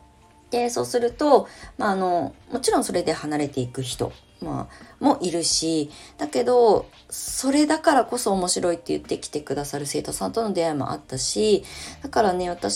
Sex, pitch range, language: female, 135-200 Hz, Japanese